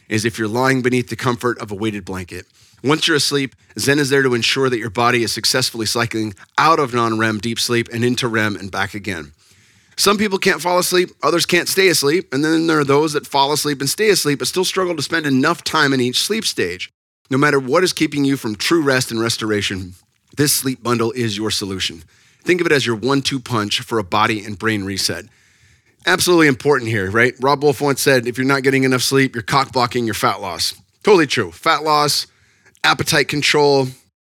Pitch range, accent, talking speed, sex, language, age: 110-140 Hz, American, 215 wpm, male, English, 30-49